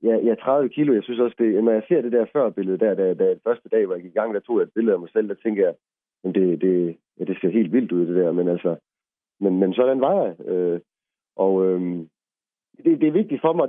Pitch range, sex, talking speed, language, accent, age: 105-160 Hz, male, 275 wpm, Danish, native, 40-59